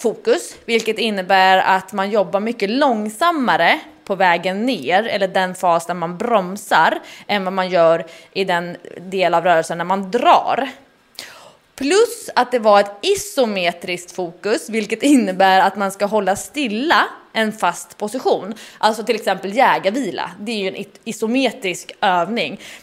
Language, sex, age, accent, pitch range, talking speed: English, female, 20-39, Swedish, 190-260 Hz, 145 wpm